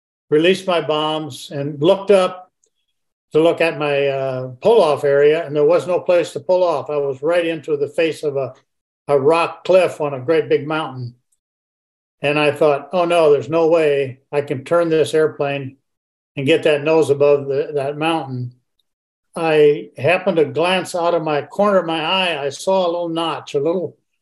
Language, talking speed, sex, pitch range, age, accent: English, 190 wpm, male, 145-185 Hz, 50-69, American